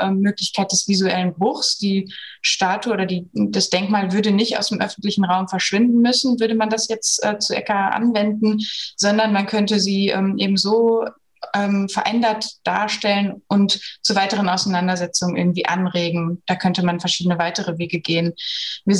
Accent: German